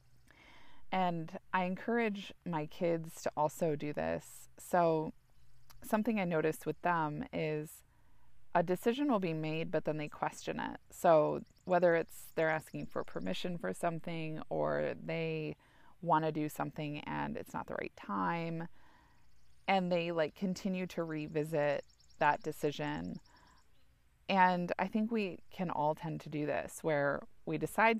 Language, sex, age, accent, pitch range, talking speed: English, female, 20-39, American, 155-185 Hz, 145 wpm